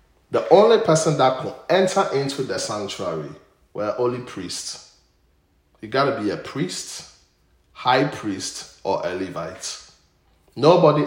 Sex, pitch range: male, 95-140 Hz